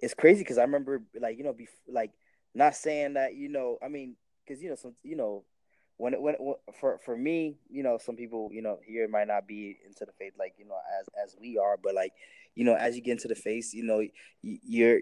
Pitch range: 110-140 Hz